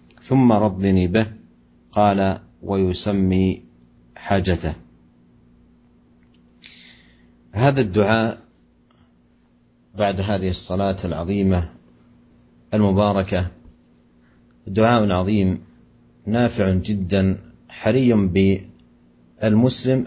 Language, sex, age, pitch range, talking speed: Malay, male, 50-69, 80-105 Hz, 55 wpm